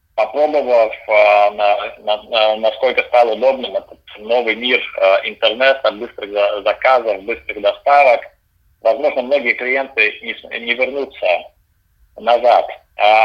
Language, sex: Russian, male